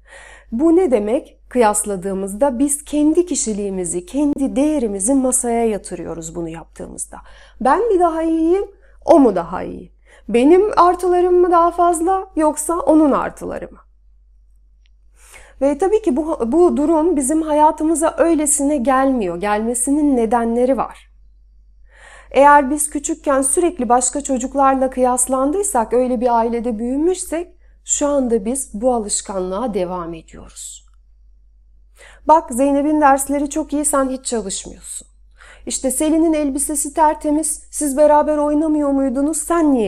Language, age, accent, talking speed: Turkish, 30-49, native, 120 wpm